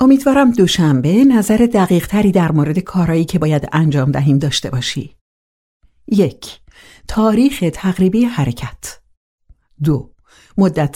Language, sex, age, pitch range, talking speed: Persian, female, 60-79, 145-200 Hz, 105 wpm